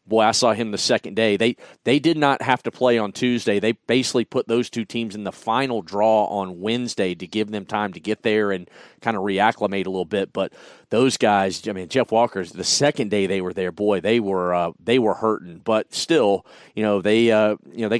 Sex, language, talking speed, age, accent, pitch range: male, English, 235 wpm, 40-59, American, 105-120 Hz